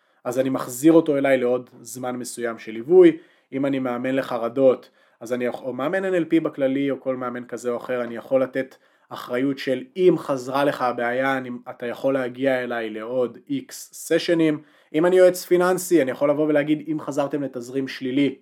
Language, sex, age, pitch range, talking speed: Hebrew, male, 20-39, 125-175 Hz, 180 wpm